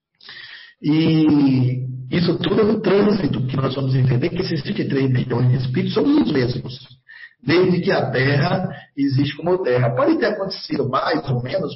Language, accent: Portuguese, Brazilian